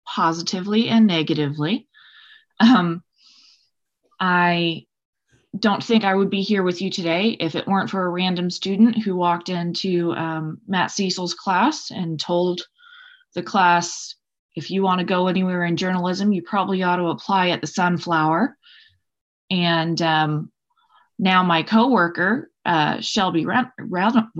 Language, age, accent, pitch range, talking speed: English, 20-39, American, 165-205 Hz, 140 wpm